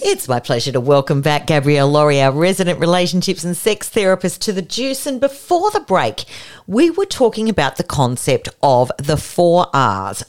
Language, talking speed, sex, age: English, 180 wpm, female, 40-59